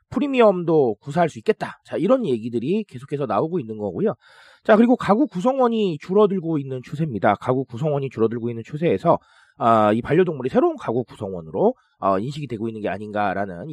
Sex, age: male, 30-49